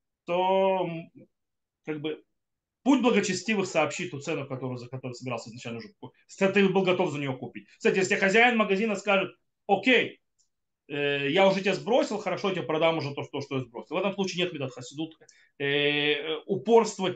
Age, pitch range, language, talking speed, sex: 30-49, 140-200 Hz, Russian, 170 wpm, male